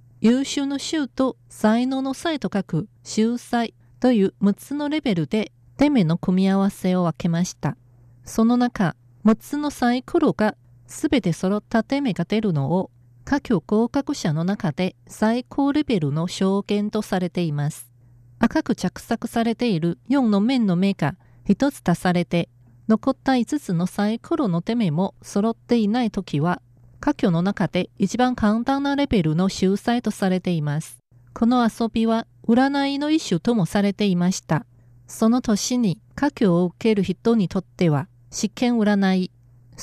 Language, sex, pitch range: Japanese, female, 170-235 Hz